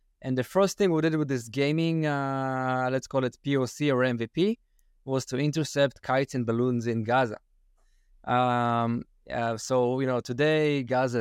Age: 20-39